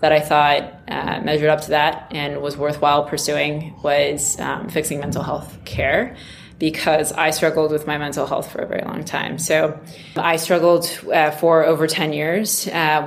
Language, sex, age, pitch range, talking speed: English, female, 20-39, 150-165 Hz, 180 wpm